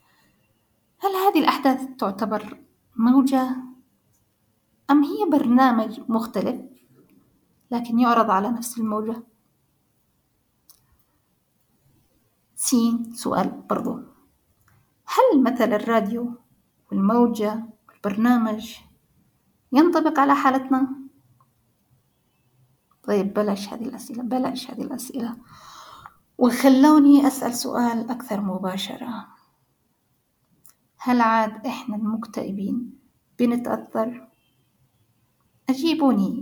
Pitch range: 225-270 Hz